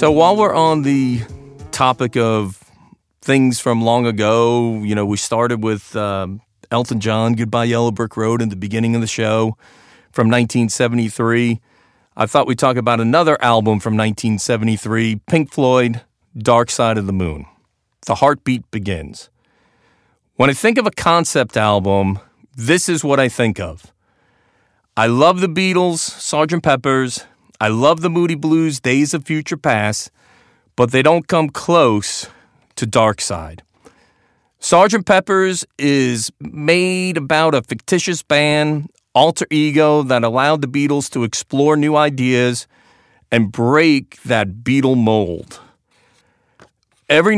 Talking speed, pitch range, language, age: 140 wpm, 110-150 Hz, English, 40-59